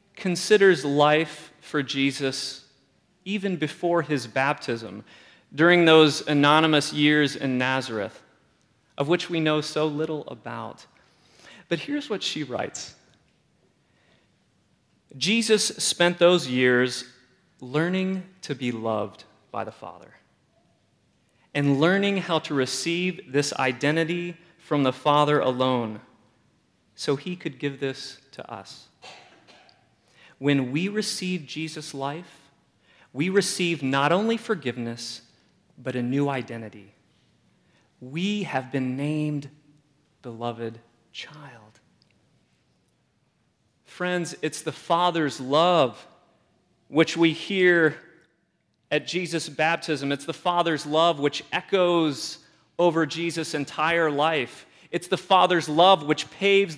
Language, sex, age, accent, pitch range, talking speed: English, male, 30-49, American, 135-175 Hz, 110 wpm